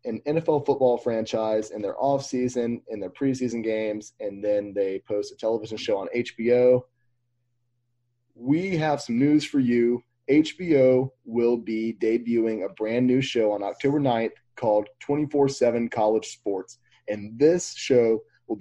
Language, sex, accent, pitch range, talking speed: English, male, American, 110-130 Hz, 140 wpm